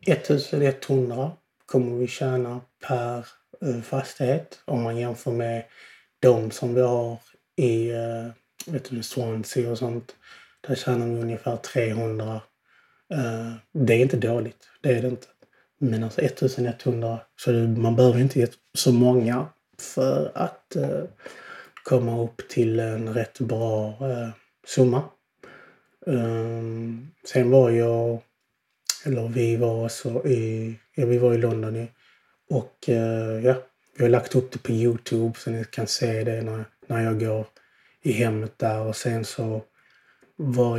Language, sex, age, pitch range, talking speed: Swedish, male, 30-49, 115-125 Hz, 140 wpm